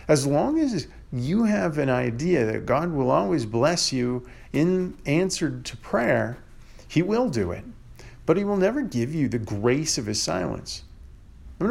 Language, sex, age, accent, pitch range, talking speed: English, male, 40-59, American, 110-155 Hz, 175 wpm